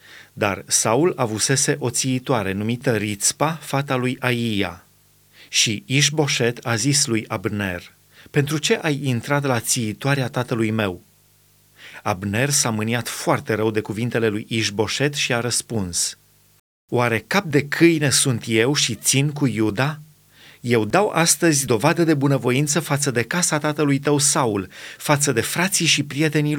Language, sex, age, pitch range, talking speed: Romanian, male, 30-49, 120-150 Hz, 140 wpm